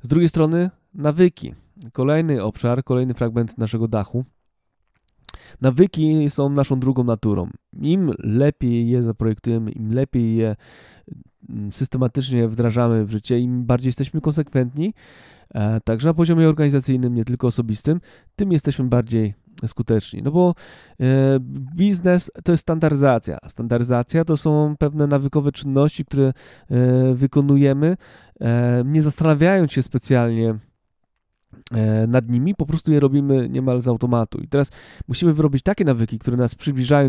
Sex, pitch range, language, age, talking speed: male, 120-150 Hz, Polish, 20-39, 130 wpm